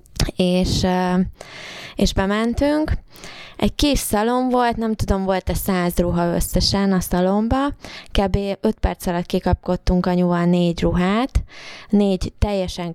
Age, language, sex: 20-39, Hungarian, female